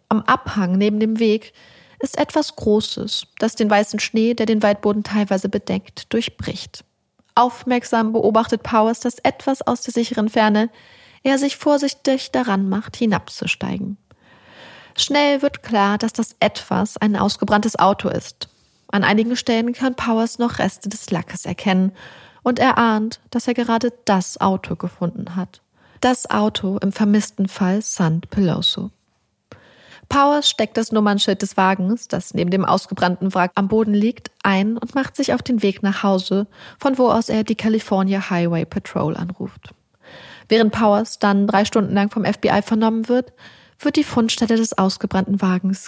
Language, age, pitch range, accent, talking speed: German, 30-49, 195-235 Hz, German, 155 wpm